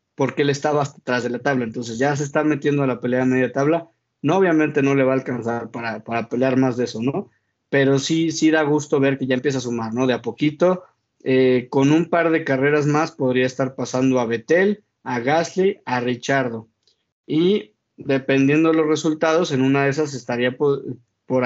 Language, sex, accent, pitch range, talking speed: Spanish, male, Mexican, 125-155 Hz, 205 wpm